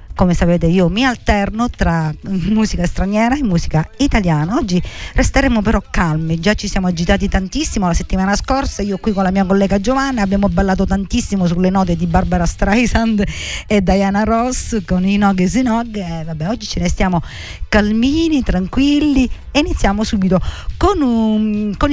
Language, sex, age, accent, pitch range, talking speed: Italian, female, 50-69, native, 175-215 Hz, 160 wpm